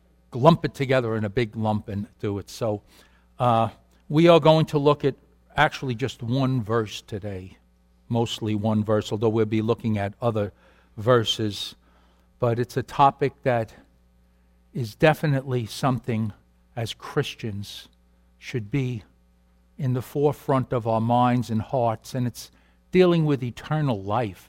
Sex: male